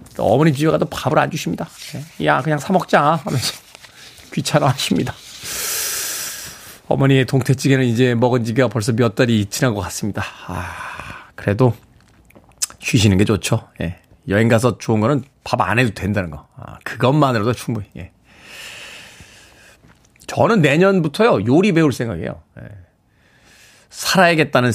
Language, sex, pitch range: Korean, male, 115-160 Hz